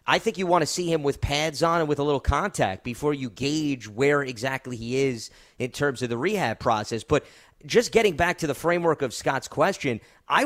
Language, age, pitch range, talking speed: English, 30-49, 125-160 Hz, 225 wpm